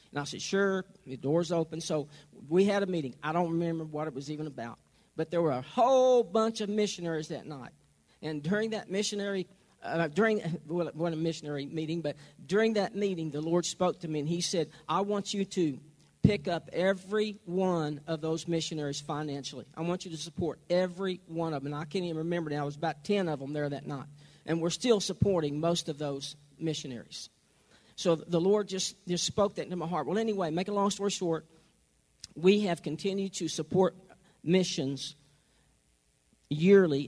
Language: English